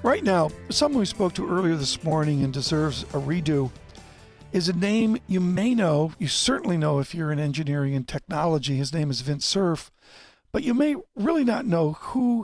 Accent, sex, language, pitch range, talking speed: American, male, English, 145-180 Hz, 195 wpm